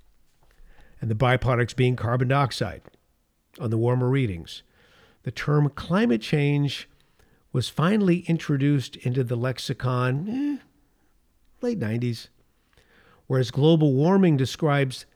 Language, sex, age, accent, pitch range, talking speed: English, male, 50-69, American, 110-150 Hz, 105 wpm